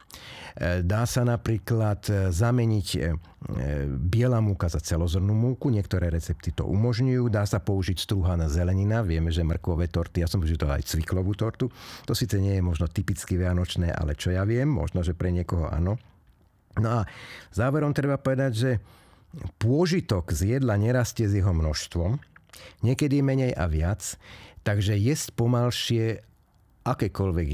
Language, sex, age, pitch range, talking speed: Slovak, male, 50-69, 85-110 Hz, 145 wpm